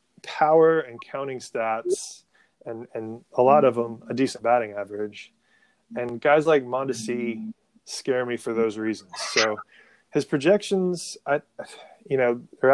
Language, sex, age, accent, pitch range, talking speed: English, male, 20-39, American, 115-145 Hz, 140 wpm